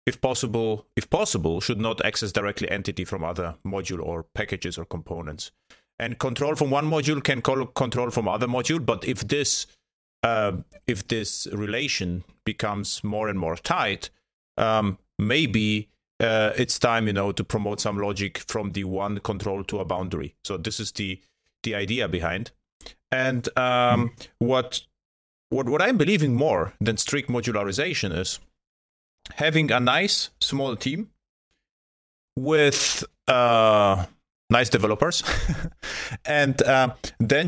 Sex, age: male, 30-49